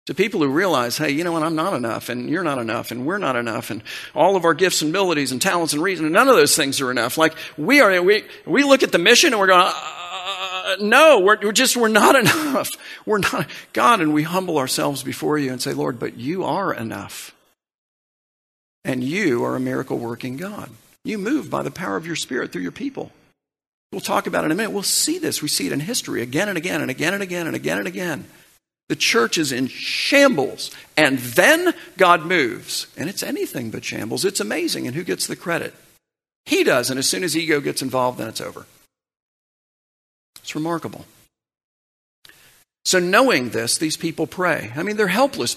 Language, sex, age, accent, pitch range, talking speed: English, male, 50-69, American, 150-240 Hz, 215 wpm